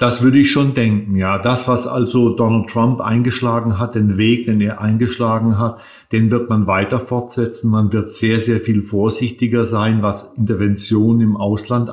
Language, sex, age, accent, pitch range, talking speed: German, male, 50-69, German, 110-130 Hz, 175 wpm